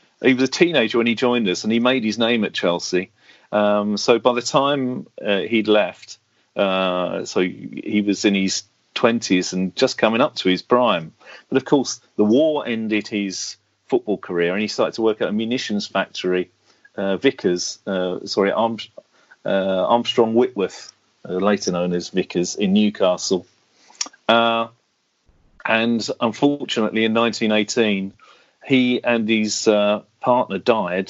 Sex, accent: male, British